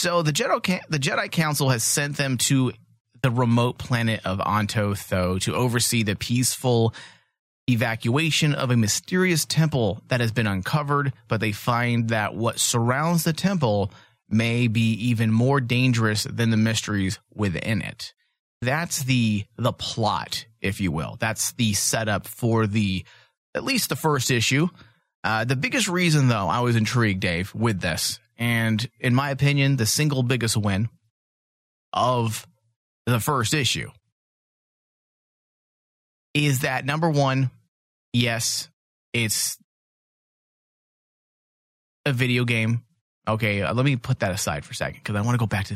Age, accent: 30-49, American